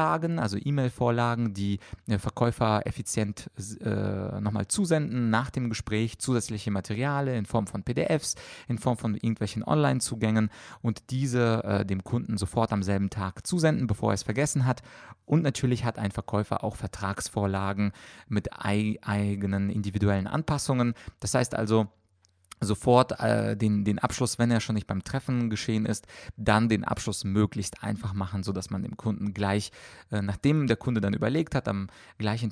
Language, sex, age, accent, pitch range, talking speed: German, male, 30-49, German, 100-120 Hz, 155 wpm